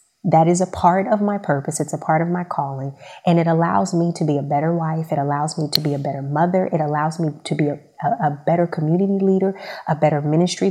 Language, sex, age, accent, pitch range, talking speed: English, female, 30-49, American, 150-185 Hz, 245 wpm